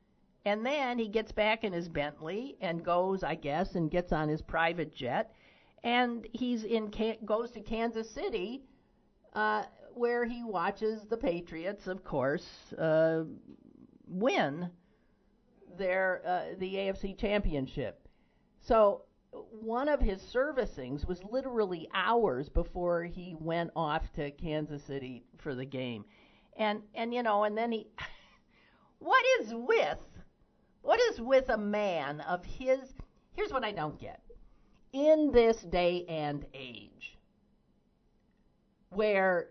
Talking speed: 130 wpm